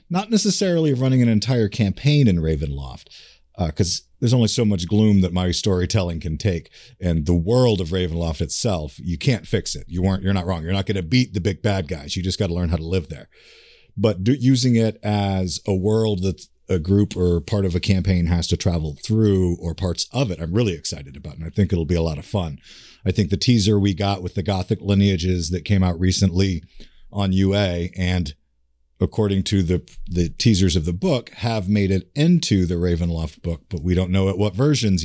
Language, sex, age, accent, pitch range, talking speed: English, male, 40-59, American, 85-100 Hz, 220 wpm